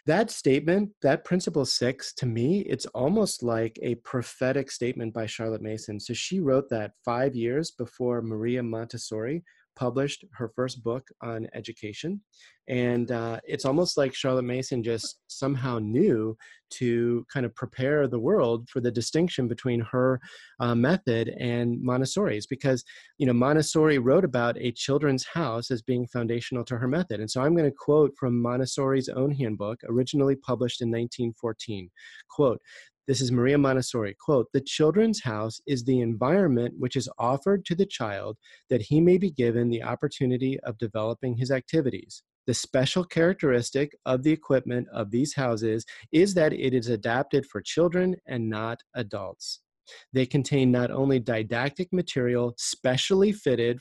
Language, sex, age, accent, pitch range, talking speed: English, male, 30-49, American, 115-140 Hz, 155 wpm